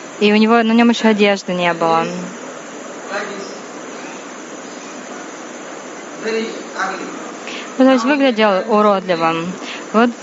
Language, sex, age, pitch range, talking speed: Russian, female, 20-39, 190-240 Hz, 90 wpm